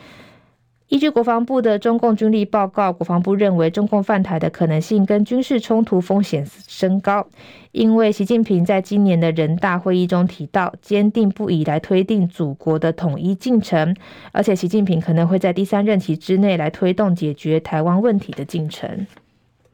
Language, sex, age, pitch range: Chinese, female, 20-39, 170-210 Hz